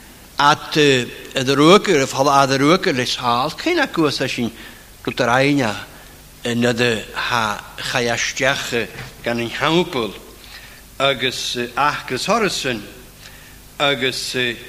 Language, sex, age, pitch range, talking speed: English, male, 60-79, 125-185 Hz, 80 wpm